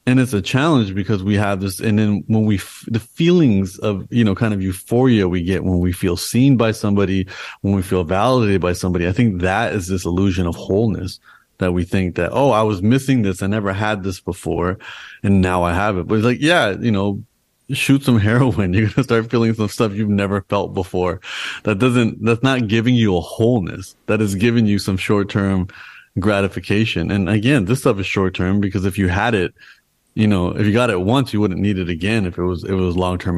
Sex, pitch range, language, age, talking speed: male, 95-115 Hz, English, 30-49, 230 wpm